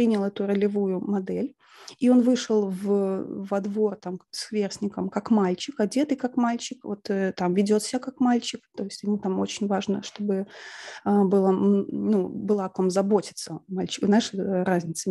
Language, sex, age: Russian, female, 30-49